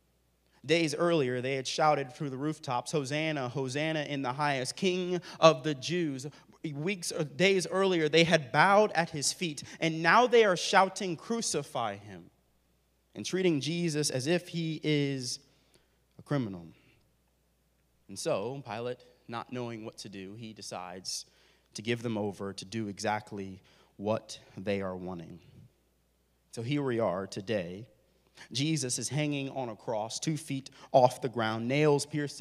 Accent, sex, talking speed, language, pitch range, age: American, male, 150 wpm, English, 110-155 Hz, 30-49